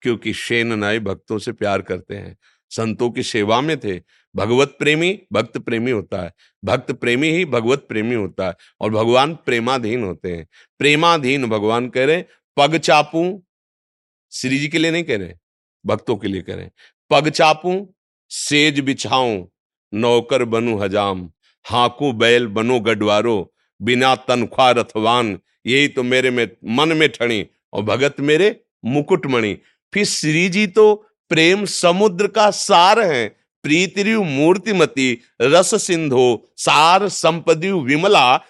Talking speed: 140 wpm